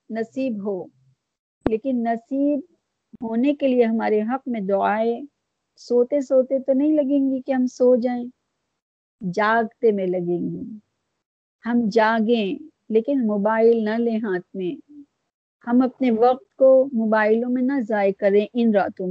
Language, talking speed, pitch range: Urdu, 140 wpm, 210-265 Hz